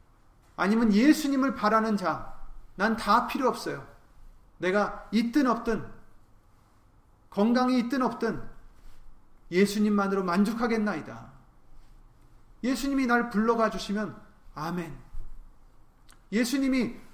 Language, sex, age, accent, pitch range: Korean, male, 30-49, native, 125-205 Hz